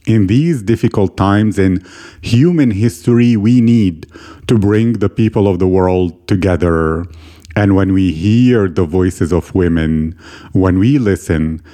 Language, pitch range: English, 95-120 Hz